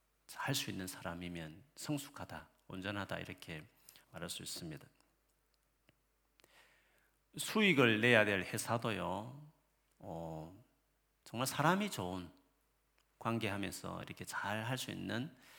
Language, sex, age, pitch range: Korean, male, 40-59, 90-130 Hz